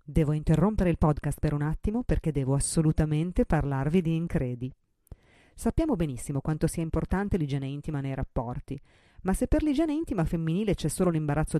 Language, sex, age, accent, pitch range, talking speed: Italian, female, 30-49, native, 145-180 Hz, 160 wpm